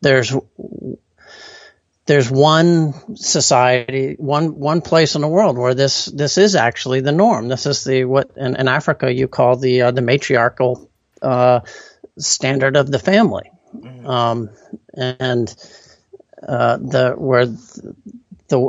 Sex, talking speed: male, 135 wpm